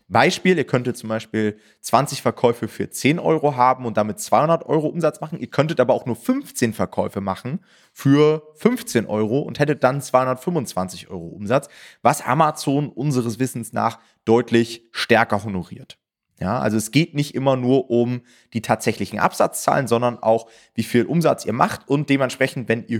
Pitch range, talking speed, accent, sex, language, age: 110-145 Hz, 165 wpm, German, male, German, 30-49